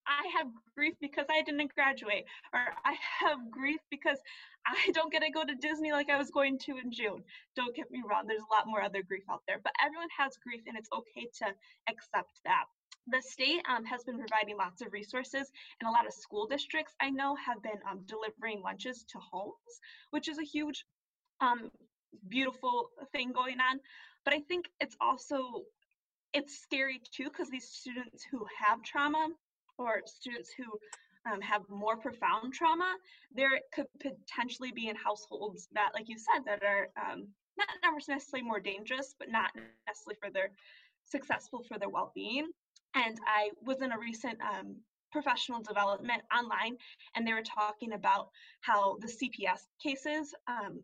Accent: American